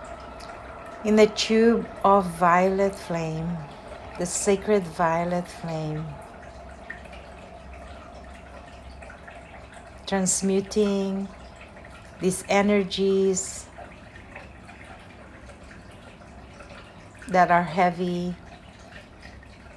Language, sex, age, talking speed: English, female, 50-69, 50 wpm